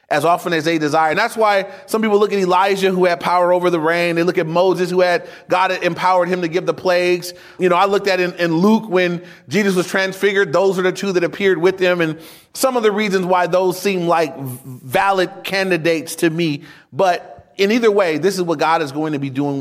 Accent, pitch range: American, 160-195 Hz